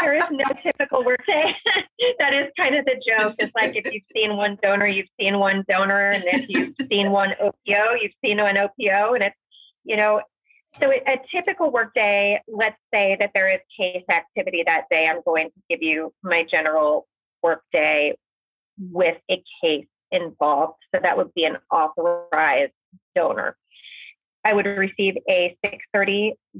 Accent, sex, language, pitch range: American, female, English, 185-220 Hz